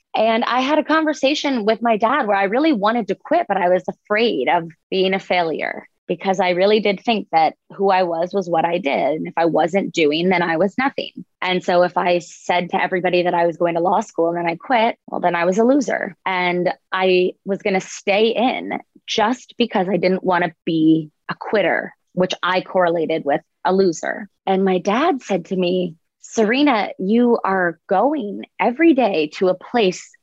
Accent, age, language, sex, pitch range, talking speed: American, 20-39, English, female, 180-230 Hz, 210 wpm